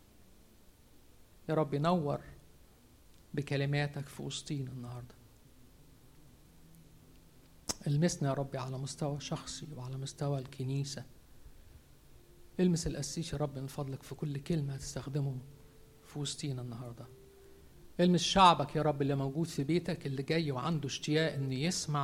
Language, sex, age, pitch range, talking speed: Arabic, male, 50-69, 130-160 Hz, 115 wpm